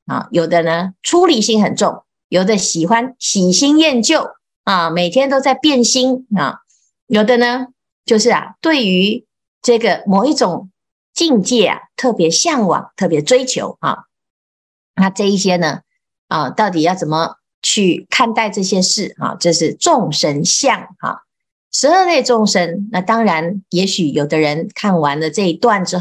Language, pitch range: Chinese, 170-245 Hz